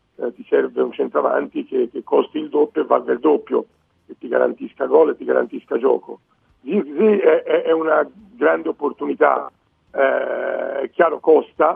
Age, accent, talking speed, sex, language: 50-69, native, 150 wpm, male, Italian